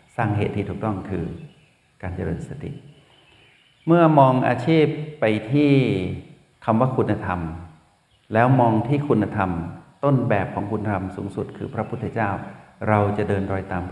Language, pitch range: Thai, 100-130 Hz